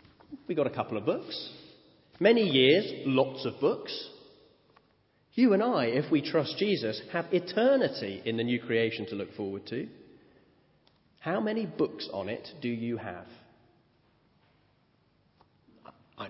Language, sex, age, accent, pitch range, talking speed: English, male, 30-49, British, 110-180 Hz, 135 wpm